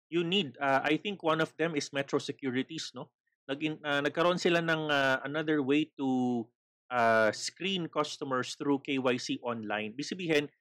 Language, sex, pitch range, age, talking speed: Filipino, male, 125-165 Hz, 30-49, 160 wpm